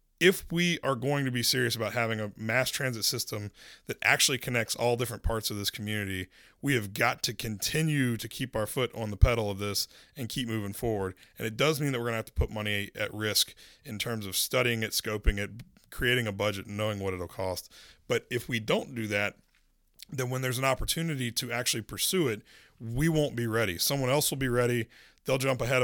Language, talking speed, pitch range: English, 225 wpm, 110-135 Hz